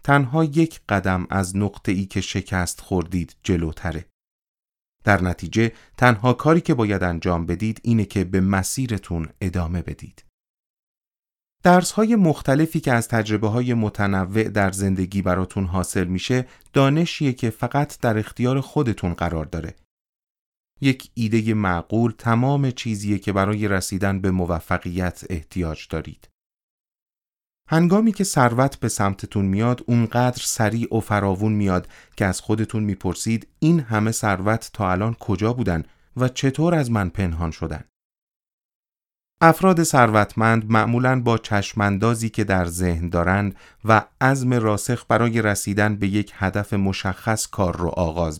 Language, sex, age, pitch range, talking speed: Persian, male, 30-49, 95-120 Hz, 130 wpm